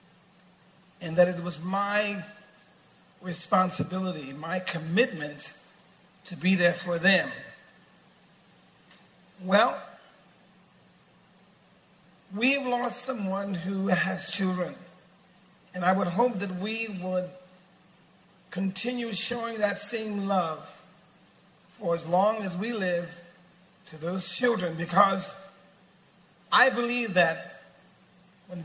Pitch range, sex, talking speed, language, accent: 180-205 Hz, male, 95 wpm, English, American